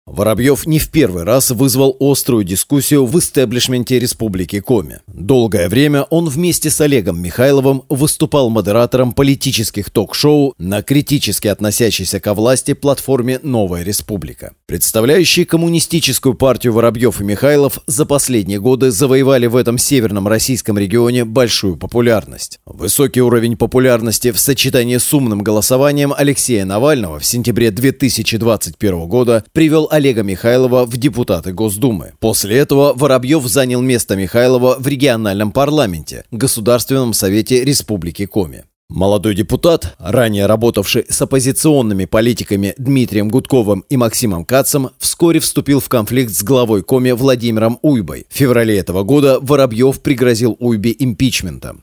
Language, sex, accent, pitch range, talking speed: Russian, male, native, 105-135 Hz, 125 wpm